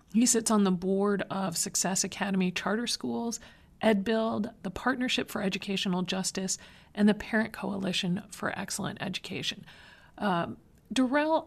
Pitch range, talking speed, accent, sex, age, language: 180-215 Hz, 130 wpm, American, female, 40-59, English